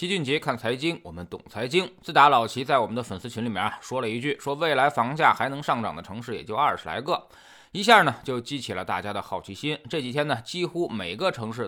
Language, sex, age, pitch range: Chinese, male, 20-39, 120-200 Hz